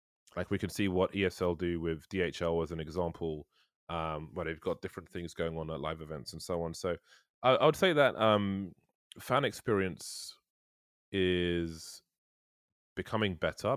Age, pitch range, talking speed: 20-39, 80-100 Hz, 165 wpm